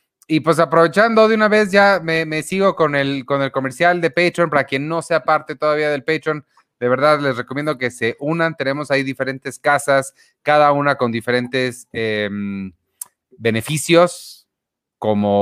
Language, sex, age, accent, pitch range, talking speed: Spanish, male, 30-49, Mexican, 115-145 Hz, 165 wpm